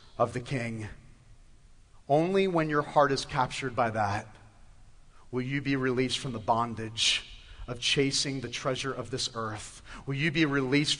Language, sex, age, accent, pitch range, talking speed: English, male, 40-59, American, 120-170 Hz, 160 wpm